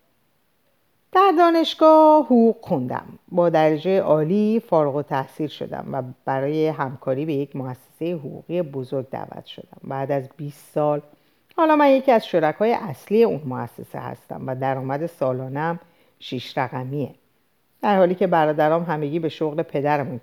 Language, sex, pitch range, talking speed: Persian, female, 140-205 Hz, 135 wpm